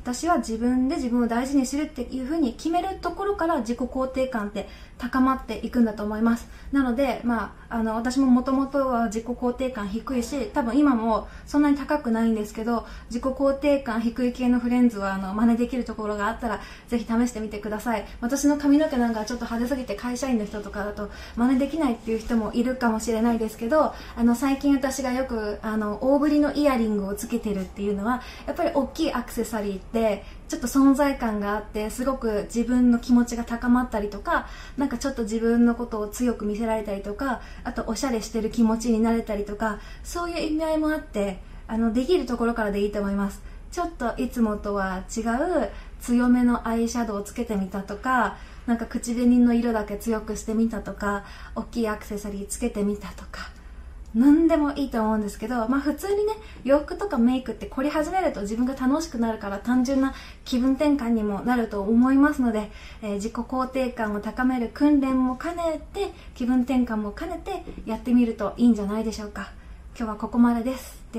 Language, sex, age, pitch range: Japanese, female, 20-39, 215-265 Hz